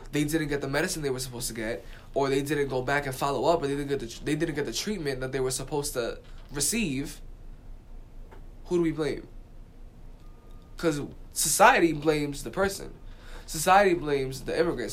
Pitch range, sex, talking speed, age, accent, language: 130-170 Hz, male, 195 wpm, 10-29, American, English